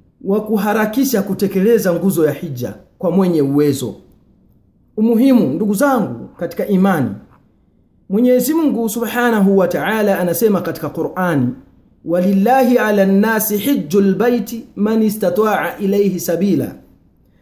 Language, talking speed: Swahili, 105 wpm